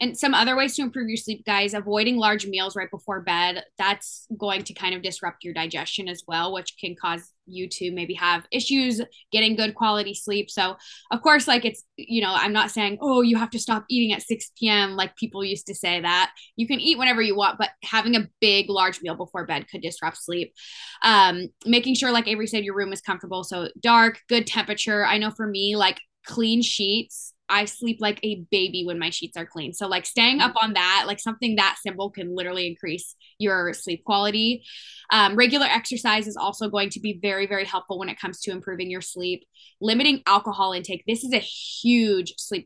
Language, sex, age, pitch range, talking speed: English, female, 10-29, 185-225 Hz, 215 wpm